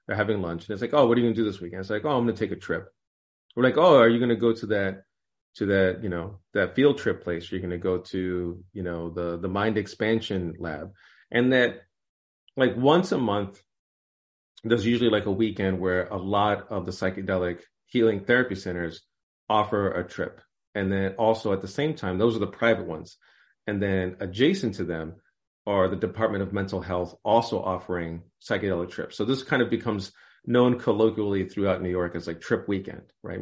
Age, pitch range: 40-59, 90-115 Hz